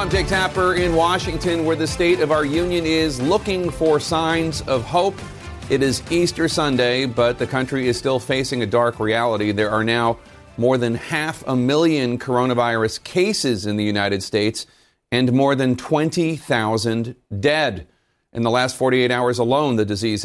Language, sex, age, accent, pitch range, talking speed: English, male, 40-59, American, 115-145 Hz, 170 wpm